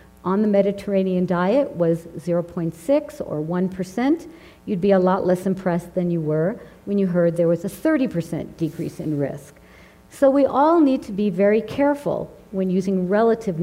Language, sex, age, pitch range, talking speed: English, female, 50-69, 170-220 Hz, 165 wpm